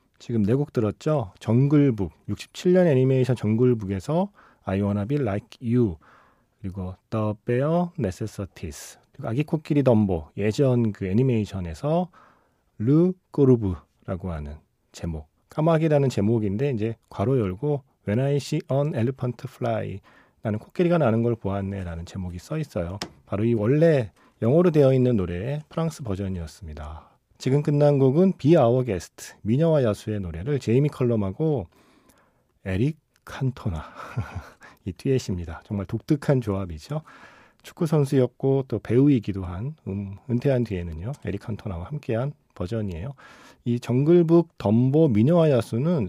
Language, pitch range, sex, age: Korean, 100-145 Hz, male, 40-59